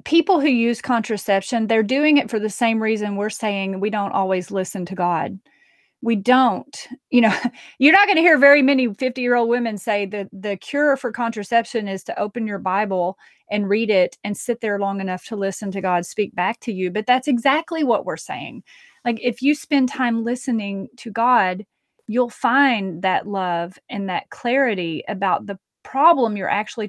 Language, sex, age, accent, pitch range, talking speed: English, female, 30-49, American, 195-245 Hz, 195 wpm